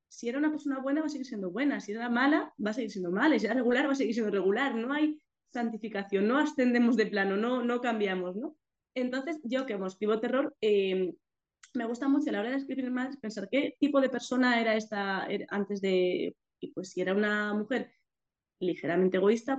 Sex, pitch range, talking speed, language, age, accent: female, 205-275 Hz, 215 wpm, Spanish, 20-39, Spanish